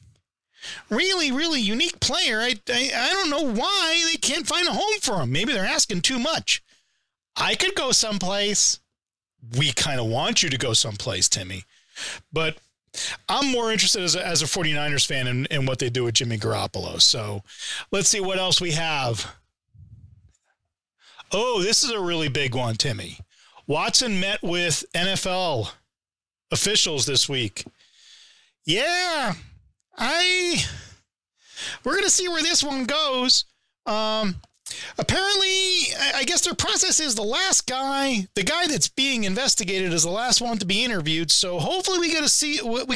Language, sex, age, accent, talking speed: English, male, 40-59, American, 160 wpm